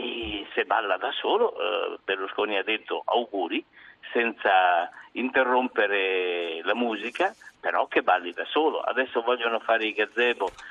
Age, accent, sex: 50-69, native, male